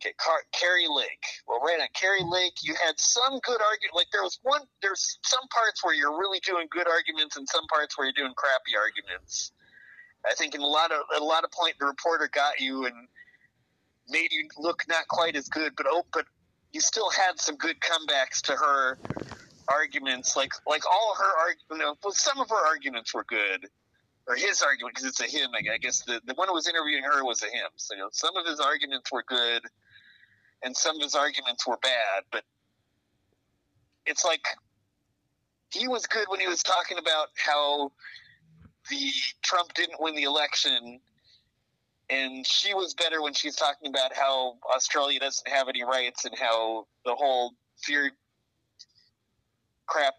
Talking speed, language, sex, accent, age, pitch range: 190 wpm, English, male, American, 30-49, 125-175 Hz